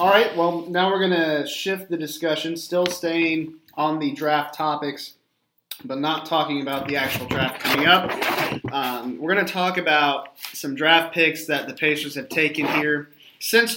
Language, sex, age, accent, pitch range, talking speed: English, male, 30-49, American, 135-165 Hz, 180 wpm